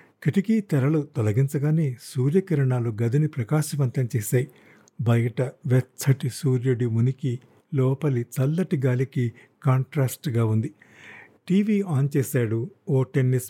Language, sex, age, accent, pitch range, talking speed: Telugu, male, 50-69, native, 125-150 Hz, 95 wpm